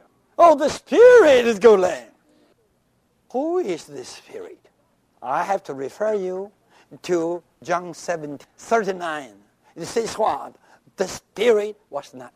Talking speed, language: 120 wpm, English